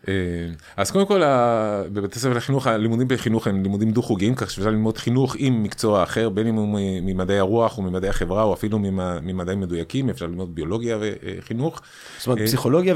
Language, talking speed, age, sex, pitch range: Hebrew, 165 wpm, 30-49, male, 100-130 Hz